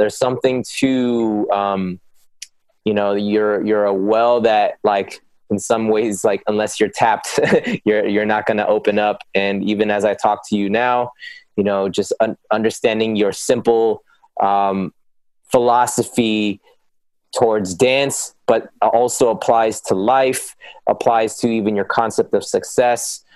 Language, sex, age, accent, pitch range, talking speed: English, male, 20-39, American, 105-120 Hz, 145 wpm